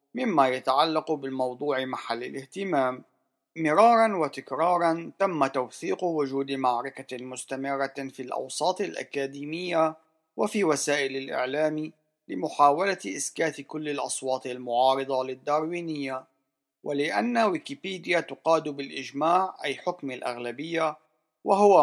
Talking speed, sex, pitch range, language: 90 wpm, male, 130-160 Hz, Arabic